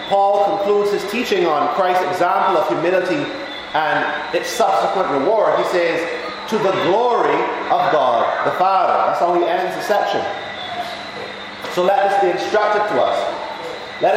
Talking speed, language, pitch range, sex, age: 155 wpm, English, 195-230 Hz, male, 30-49